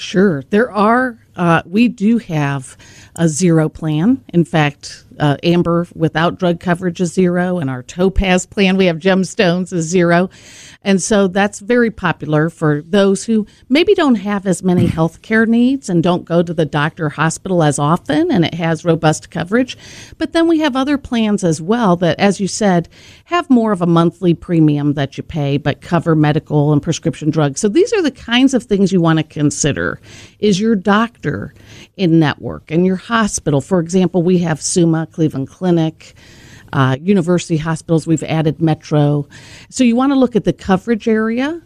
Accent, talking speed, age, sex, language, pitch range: American, 180 wpm, 50-69, female, English, 160-225 Hz